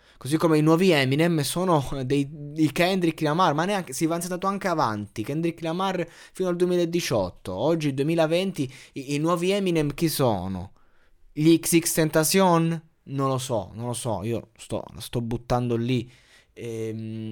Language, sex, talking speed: Italian, male, 155 wpm